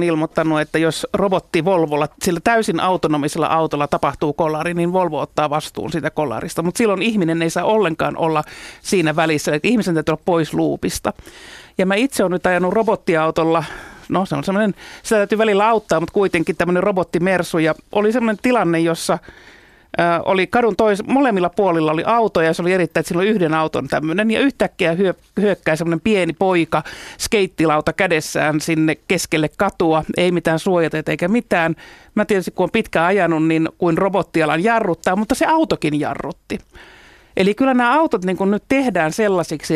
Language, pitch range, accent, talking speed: Finnish, 160-195 Hz, native, 165 wpm